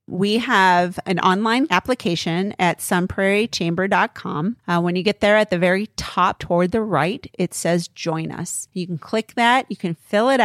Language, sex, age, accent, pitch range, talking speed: English, female, 40-59, American, 170-210 Hz, 170 wpm